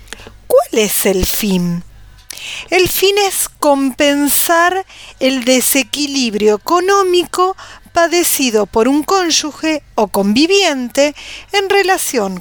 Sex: female